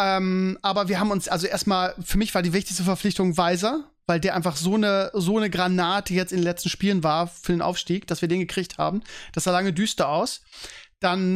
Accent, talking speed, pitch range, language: German, 215 wpm, 185-215 Hz, German